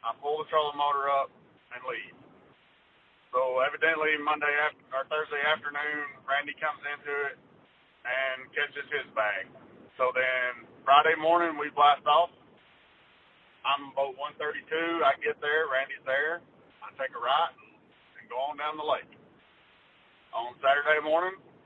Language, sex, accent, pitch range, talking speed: English, male, American, 135-160 Hz, 145 wpm